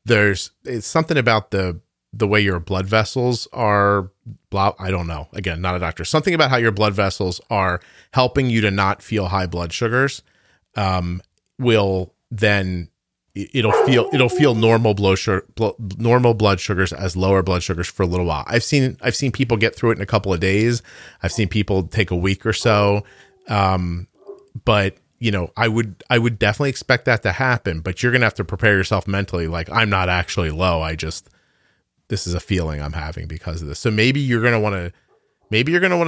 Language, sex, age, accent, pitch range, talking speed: English, male, 30-49, American, 90-115 Hz, 210 wpm